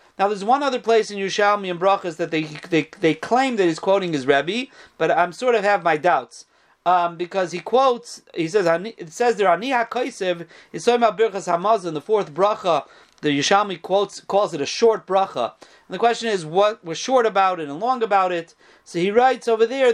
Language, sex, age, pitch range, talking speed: English, male, 40-59, 175-230 Hz, 210 wpm